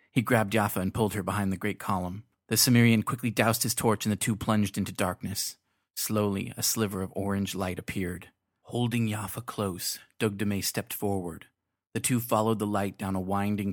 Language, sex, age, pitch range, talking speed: English, male, 30-49, 100-115 Hz, 190 wpm